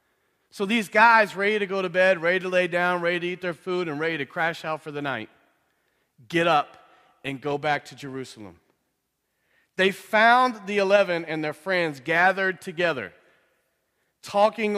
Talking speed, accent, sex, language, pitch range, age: 170 wpm, American, male, English, 160-210 Hz, 40-59